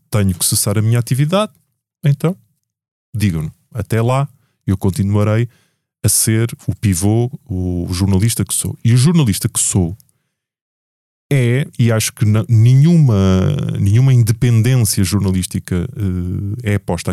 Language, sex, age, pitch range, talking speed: Portuguese, male, 20-39, 100-130 Hz, 130 wpm